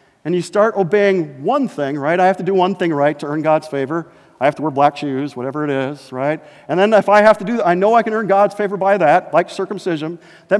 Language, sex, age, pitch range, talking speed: English, male, 50-69, 150-205 Hz, 270 wpm